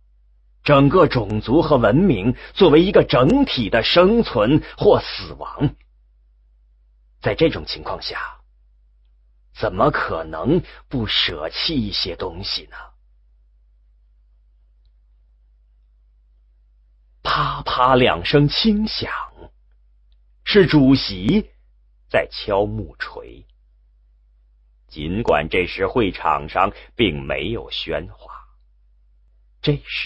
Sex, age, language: male, 30-49, English